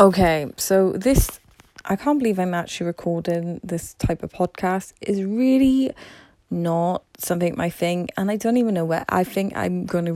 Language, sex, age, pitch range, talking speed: English, female, 10-29, 170-215 Hz, 170 wpm